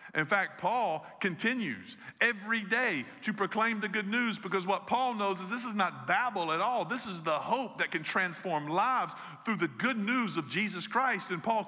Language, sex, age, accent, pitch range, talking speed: English, male, 50-69, American, 160-215 Hz, 200 wpm